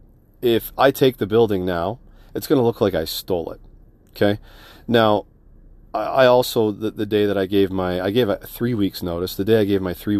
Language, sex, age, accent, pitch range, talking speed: English, male, 40-59, American, 95-115 Hz, 220 wpm